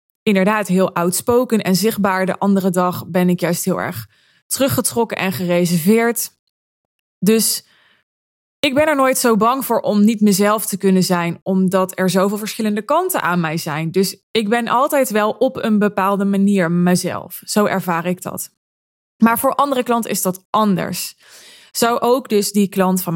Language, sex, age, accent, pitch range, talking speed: Dutch, female, 20-39, Dutch, 180-230 Hz, 170 wpm